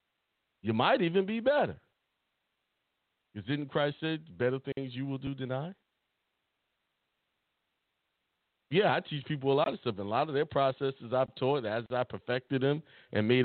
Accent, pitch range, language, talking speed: American, 115-155 Hz, English, 165 wpm